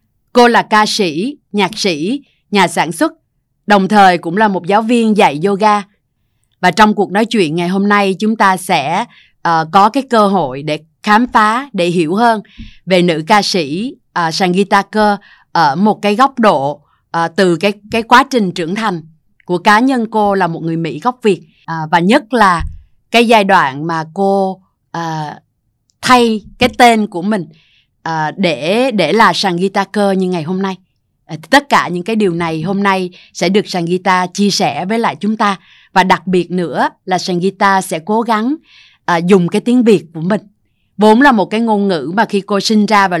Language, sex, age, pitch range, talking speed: Vietnamese, female, 20-39, 175-215 Hz, 200 wpm